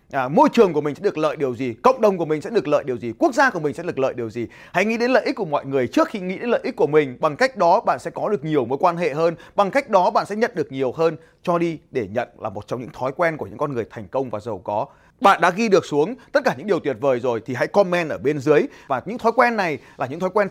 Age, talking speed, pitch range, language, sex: 20-39, 320 wpm, 155-230 Hz, Vietnamese, male